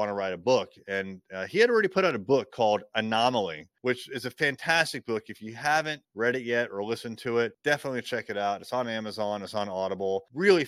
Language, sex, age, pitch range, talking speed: English, male, 30-49, 105-130 Hz, 235 wpm